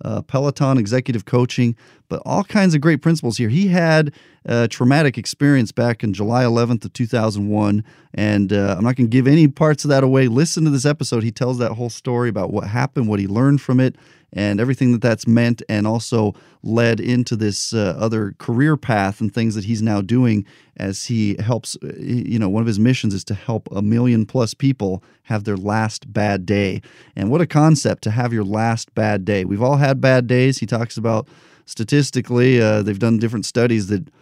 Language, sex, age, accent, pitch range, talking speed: English, male, 40-59, American, 110-130 Hz, 205 wpm